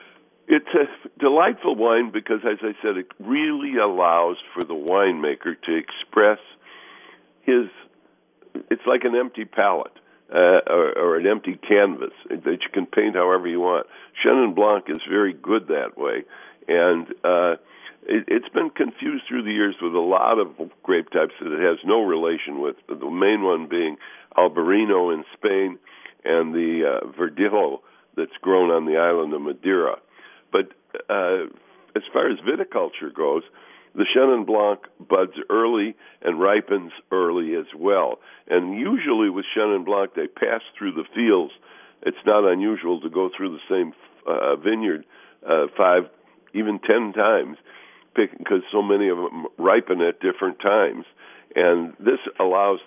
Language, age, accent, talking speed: English, 60-79, American, 150 wpm